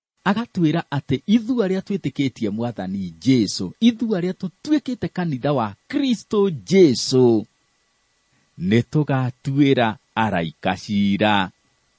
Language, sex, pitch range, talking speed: English, male, 100-150 Hz, 110 wpm